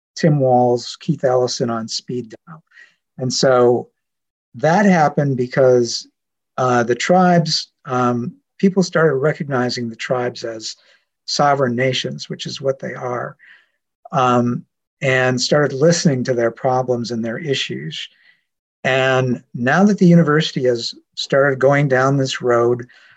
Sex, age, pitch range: male, 50-69, 120-155 Hz